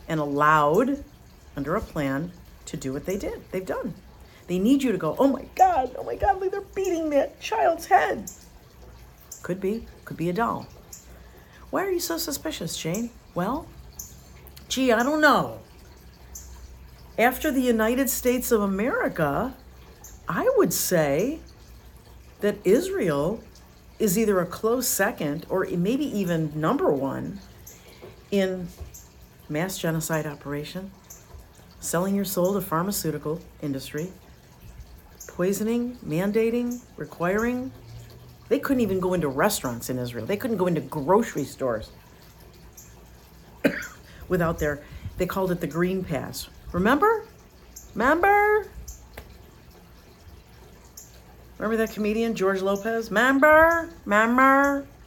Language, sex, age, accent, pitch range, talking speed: English, female, 50-69, American, 150-245 Hz, 120 wpm